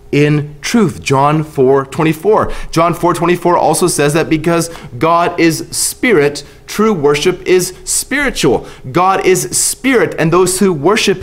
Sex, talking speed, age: male, 130 wpm, 30-49